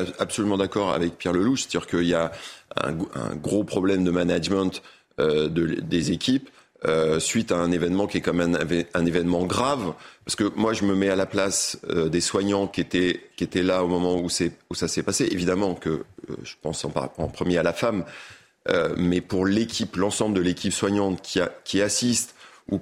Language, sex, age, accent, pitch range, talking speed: French, male, 30-49, French, 85-105 Hz, 210 wpm